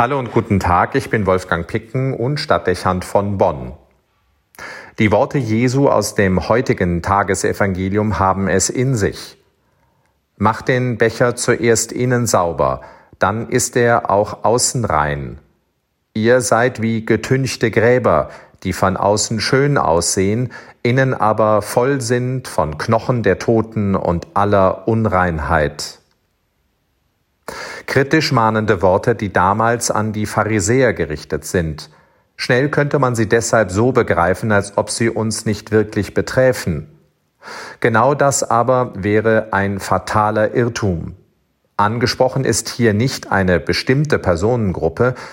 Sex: male